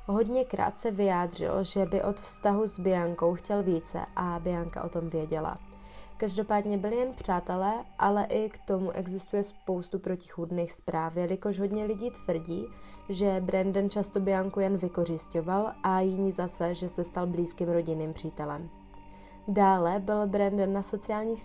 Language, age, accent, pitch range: Czech, 20-39, native, 170-205 Hz